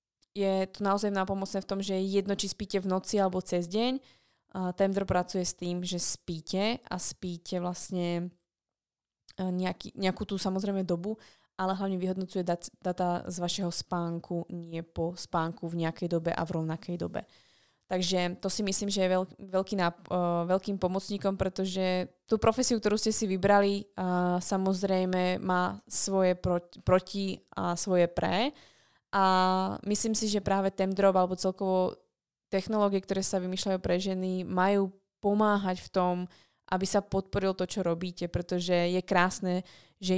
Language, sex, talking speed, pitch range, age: Slovak, female, 150 wpm, 180-200 Hz, 20-39